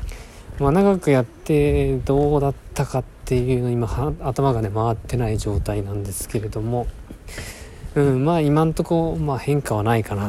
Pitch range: 105-135 Hz